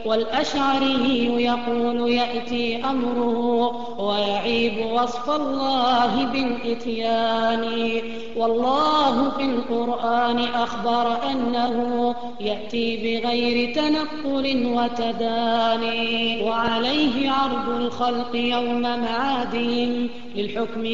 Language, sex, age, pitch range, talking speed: Arabic, female, 20-39, 230-270 Hz, 65 wpm